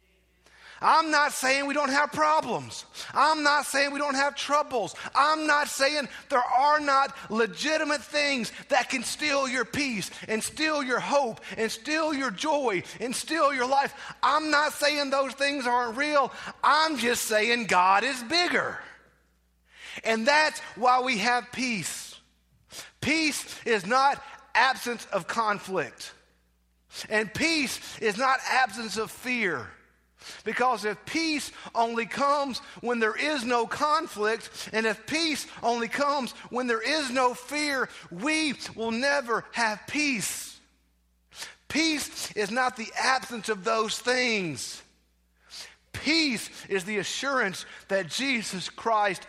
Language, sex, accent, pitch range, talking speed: English, male, American, 205-285 Hz, 135 wpm